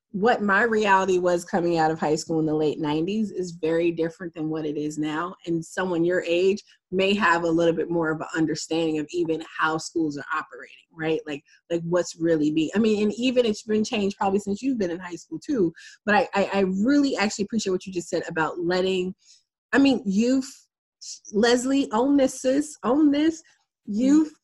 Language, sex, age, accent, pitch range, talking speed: English, female, 20-39, American, 170-235 Hz, 205 wpm